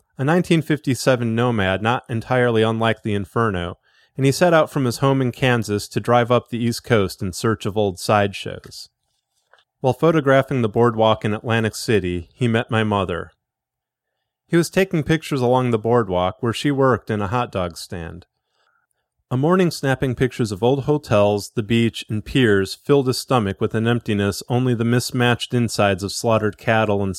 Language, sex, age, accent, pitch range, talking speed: English, male, 30-49, American, 105-135 Hz, 175 wpm